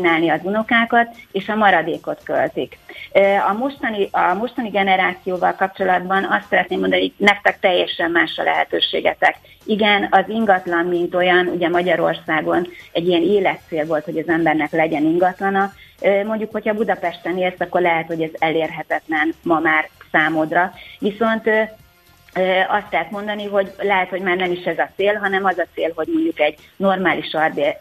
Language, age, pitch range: Hungarian, 30-49, 160-195 Hz